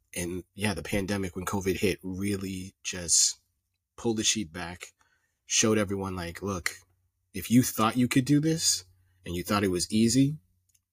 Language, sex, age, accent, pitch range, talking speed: English, male, 30-49, American, 85-105 Hz, 165 wpm